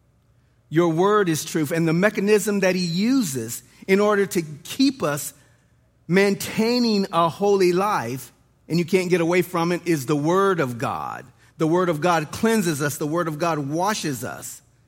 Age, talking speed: 40-59, 175 wpm